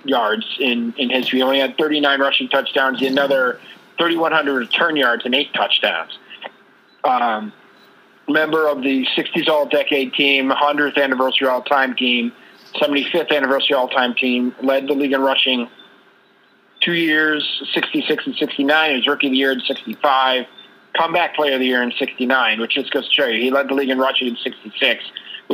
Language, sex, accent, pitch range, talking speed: English, male, American, 125-150 Hz, 165 wpm